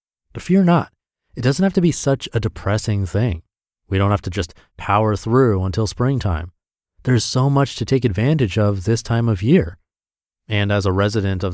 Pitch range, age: 95-140 Hz, 30-49